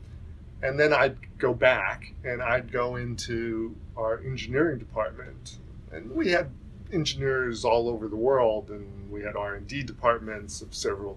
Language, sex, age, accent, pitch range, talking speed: English, male, 40-59, American, 105-125 Hz, 145 wpm